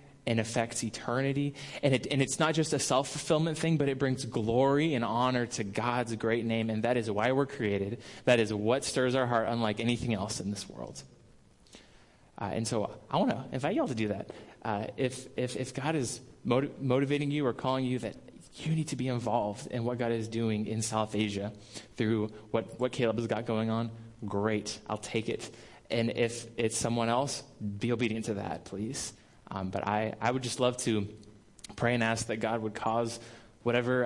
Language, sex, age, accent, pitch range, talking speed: English, male, 20-39, American, 110-125 Hz, 205 wpm